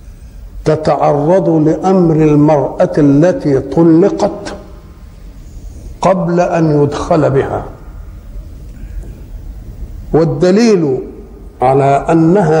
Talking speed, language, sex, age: 55 wpm, Arabic, male, 50-69